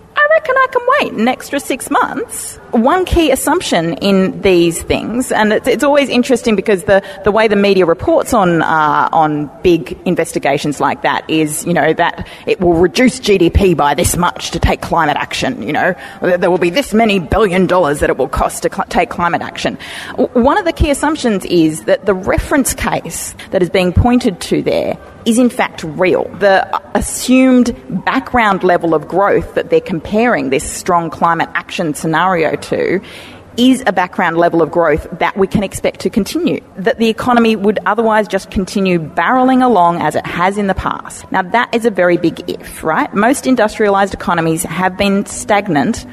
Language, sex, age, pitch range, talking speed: English, female, 30-49, 170-240 Hz, 180 wpm